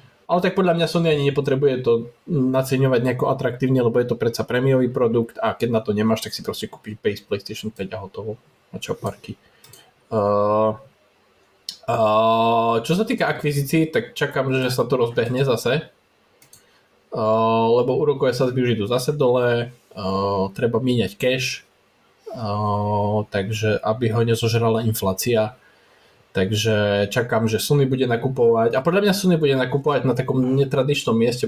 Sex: male